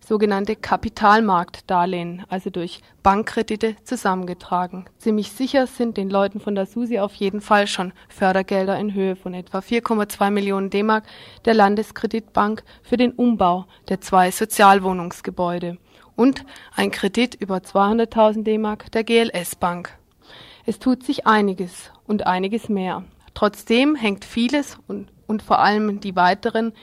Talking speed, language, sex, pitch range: 130 wpm, German, female, 195-230 Hz